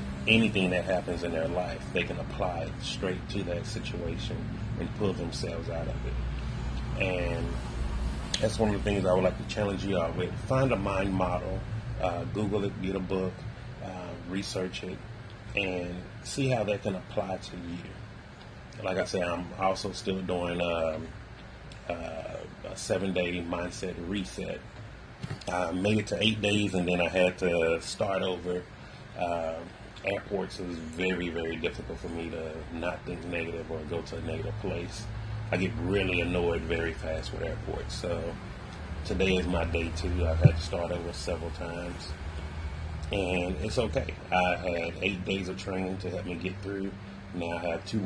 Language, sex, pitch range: English, male, 85-100 Hz